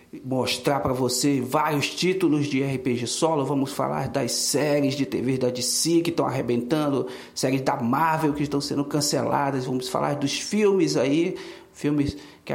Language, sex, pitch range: English, male, 130-160 Hz